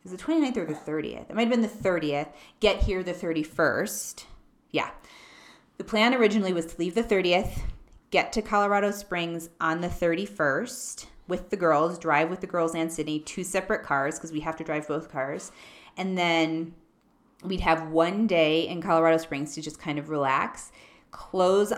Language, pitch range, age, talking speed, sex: English, 155-200 Hz, 30-49, 180 wpm, female